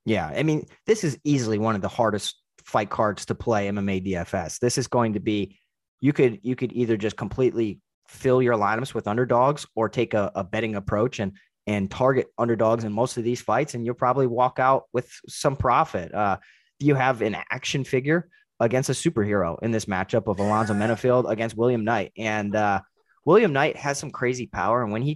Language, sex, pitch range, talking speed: English, male, 105-130 Hz, 205 wpm